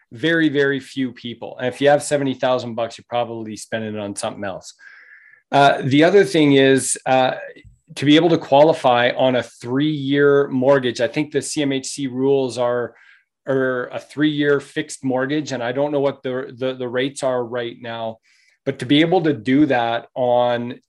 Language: English